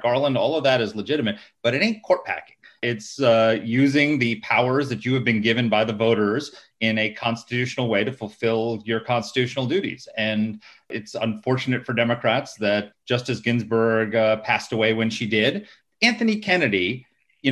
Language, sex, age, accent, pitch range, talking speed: English, male, 30-49, American, 115-150 Hz, 170 wpm